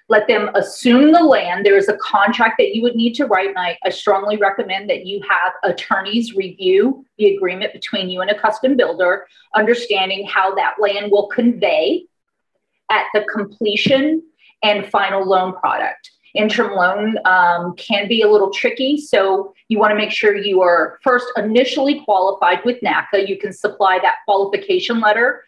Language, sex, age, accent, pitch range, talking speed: English, female, 30-49, American, 190-245 Hz, 165 wpm